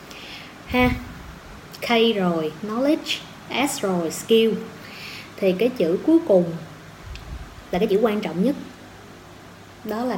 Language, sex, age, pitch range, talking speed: Vietnamese, female, 20-39, 175-230 Hz, 110 wpm